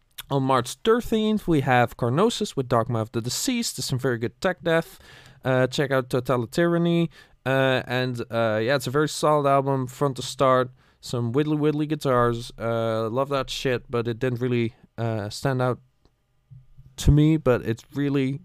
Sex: male